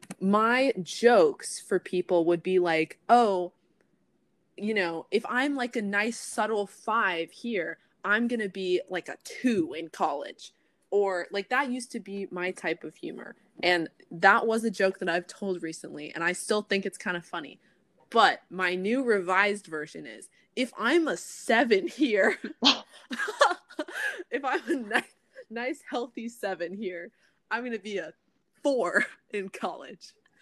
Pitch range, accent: 180-235 Hz, American